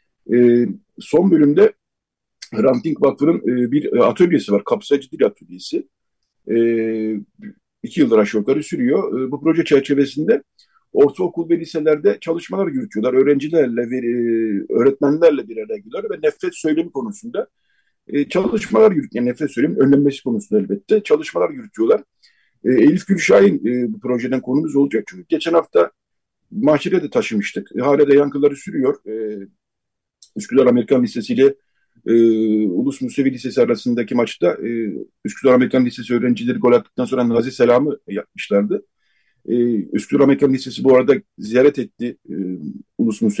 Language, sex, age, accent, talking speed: Turkish, male, 50-69, native, 140 wpm